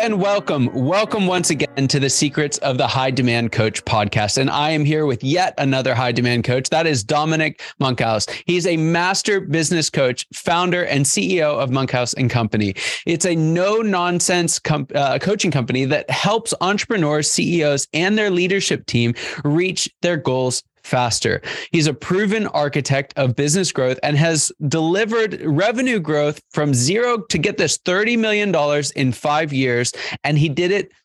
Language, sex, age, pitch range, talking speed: English, male, 20-39, 130-175 Hz, 160 wpm